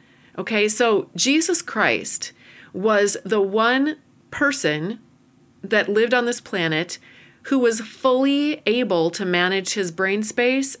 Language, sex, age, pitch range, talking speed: English, female, 30-49, 180-230 Hz, 120 wpm